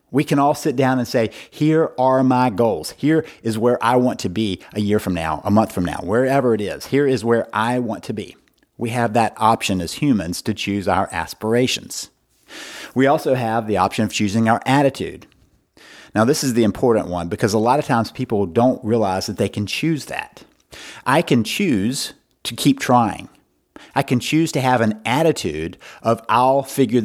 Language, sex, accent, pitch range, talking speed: English, male, American, 100-130 Hz, 200 wpm